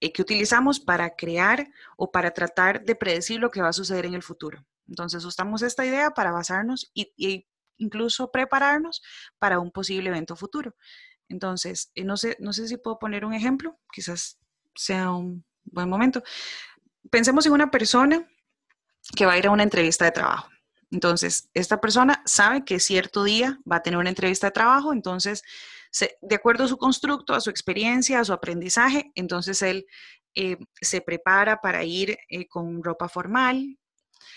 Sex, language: female, Spanish